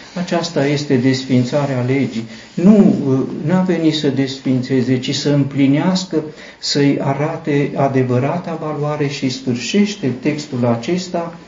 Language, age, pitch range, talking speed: Romanian, 50-69, 125-155 Hz, 105 wpm